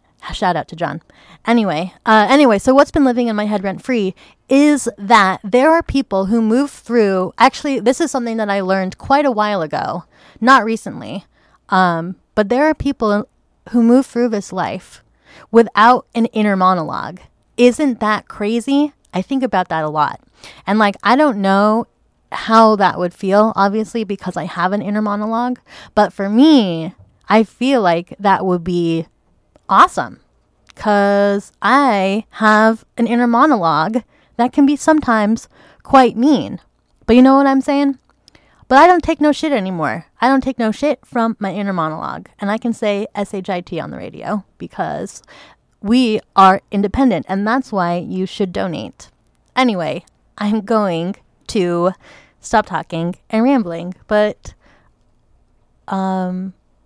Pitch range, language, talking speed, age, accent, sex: 190-250 Hz, English, 155 wpm, 20-39, American, female